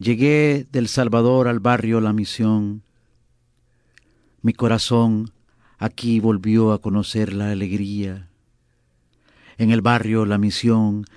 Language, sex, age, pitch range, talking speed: English, male, 50-69, 105-120 Hz, 105 wpm